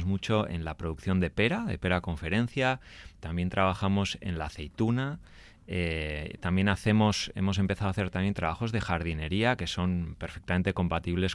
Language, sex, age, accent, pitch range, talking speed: Spanish, male, 30-49, Spanish, 85-105 Hz, 155 wpm